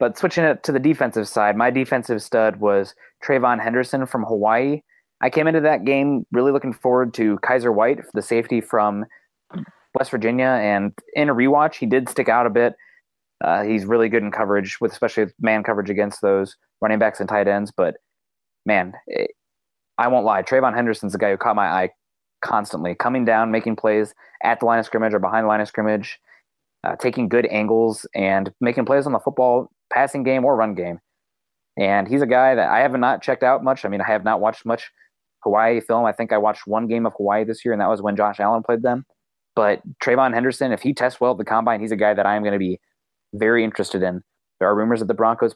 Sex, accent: male, American